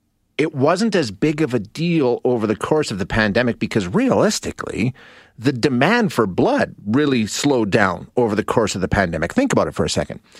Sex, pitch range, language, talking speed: male, 95-125 Hz, English, 195 wpm